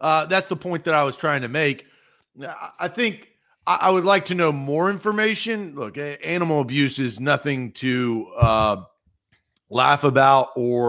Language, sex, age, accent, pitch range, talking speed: English, male, 40-59, American, 135-180 Hz, 165 wpm